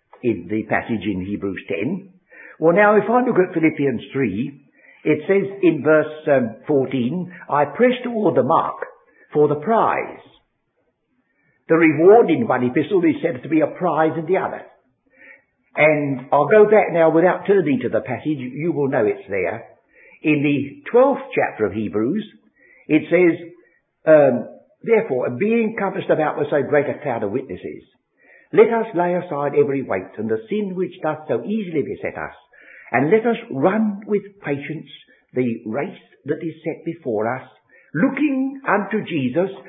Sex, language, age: male, English, 60-79